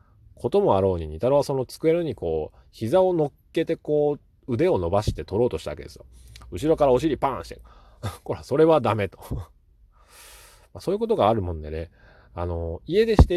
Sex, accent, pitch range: male, native, 85-130 Hz